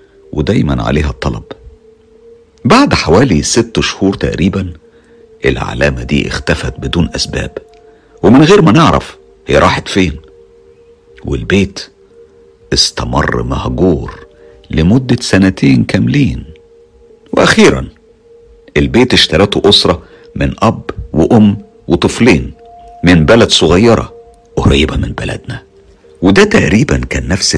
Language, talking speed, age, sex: Arabic, 95 wpm, 50-69, male